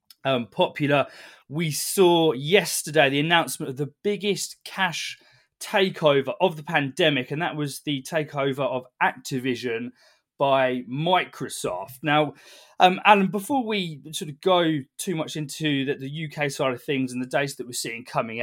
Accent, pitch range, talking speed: British, 140-185 Hz, 155 wpm